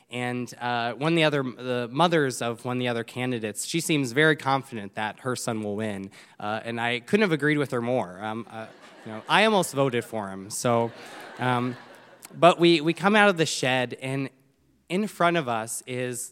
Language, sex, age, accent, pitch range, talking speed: English, male, 20-39, American, 115-140 Hz, 210 wpm